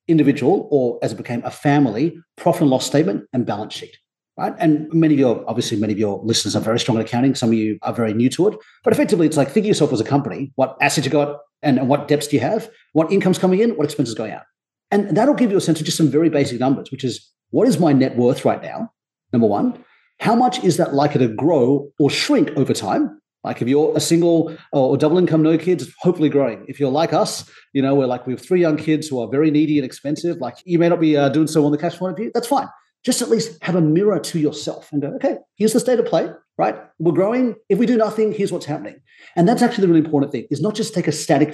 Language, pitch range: English, 135-180 Hz